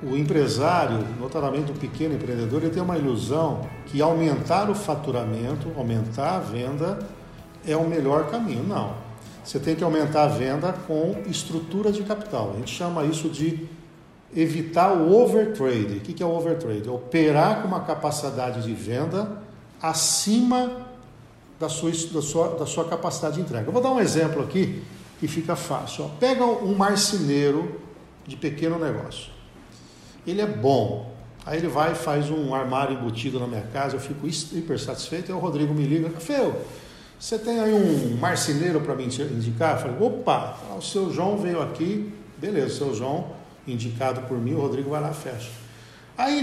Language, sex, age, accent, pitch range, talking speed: Portuguese, male, 50-69, Brazilian, 130-180 Hz, 170 wpm